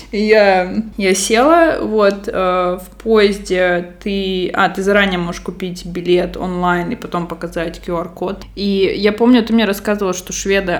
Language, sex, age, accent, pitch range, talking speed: Russian, female, 20-39, native, 175-215 Hz, 150 wpm